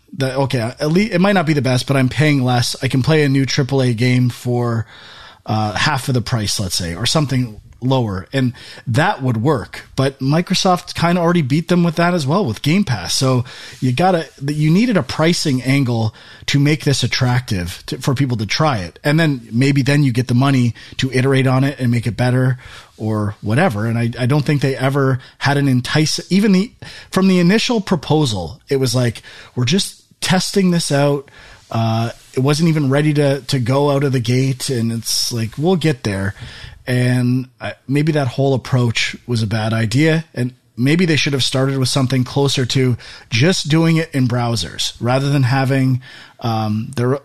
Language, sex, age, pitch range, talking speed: English, male, 30-49, 120-150 Hz, 200 wpm